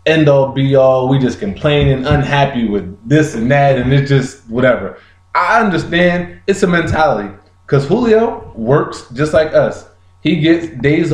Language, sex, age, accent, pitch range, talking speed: English, male, 20-39, American, 135-195 Hz, 160 wpm